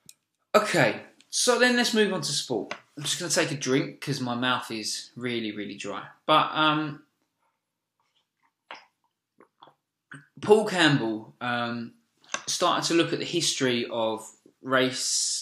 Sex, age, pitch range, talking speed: male, 20-39, 110-145 Hz, 135 wpm